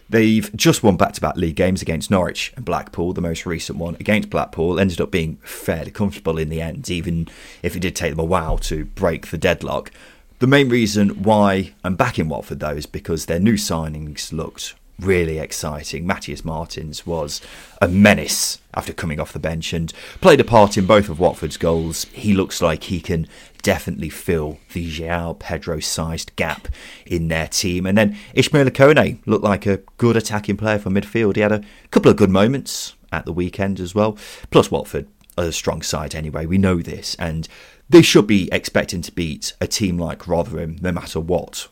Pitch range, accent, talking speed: 80-100 Hz, British, 195 wpm